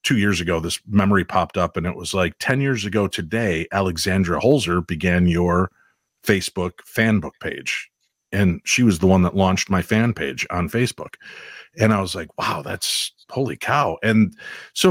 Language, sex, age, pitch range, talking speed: English, male, 40-59, 90-110 Hz, 175 wpm